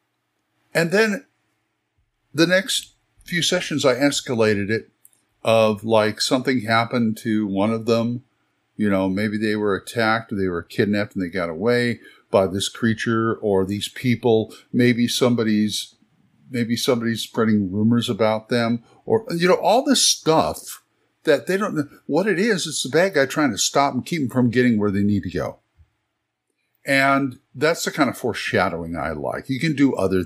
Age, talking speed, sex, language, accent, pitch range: 50-69, 175 wpm, male, English, American, 105-125 Hz